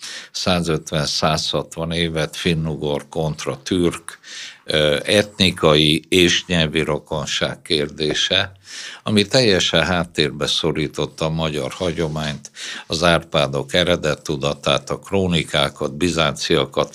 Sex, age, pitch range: male, 60-79, 80-95 Hz